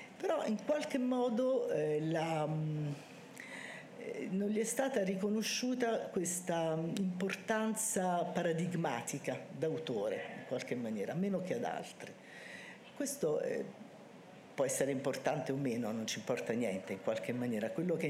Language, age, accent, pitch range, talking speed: Italian, 50-69, native, 160-200 Hz, 130 wpm